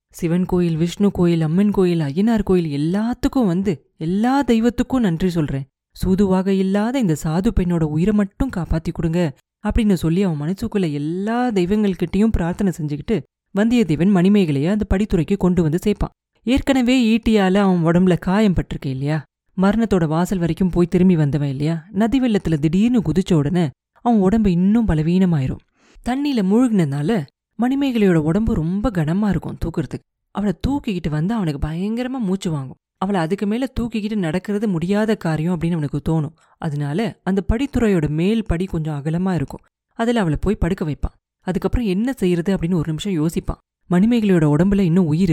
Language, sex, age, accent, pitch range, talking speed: Tamil, female, 30-49, native, 165-210 Hz, 145 wpm